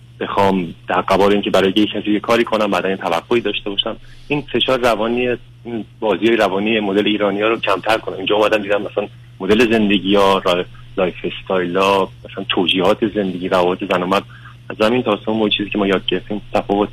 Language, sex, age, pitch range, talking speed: Persian, male, 30-49, 95-120 Hz, 175 wpm